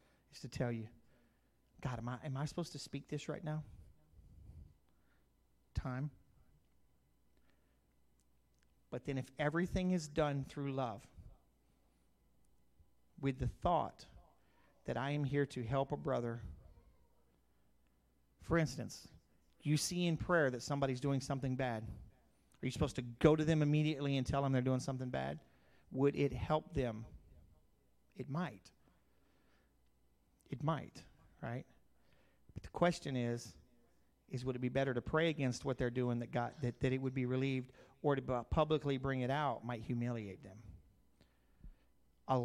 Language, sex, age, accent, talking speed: English, male, 40-59, American, 145 wpm